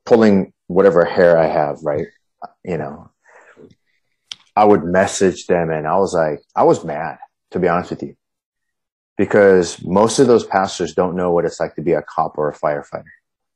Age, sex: 30-49, male